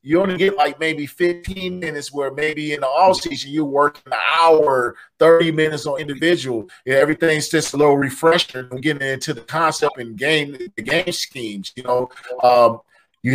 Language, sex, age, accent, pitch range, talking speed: English, male, 40-59, American, 130-165 Hz, 180 wpm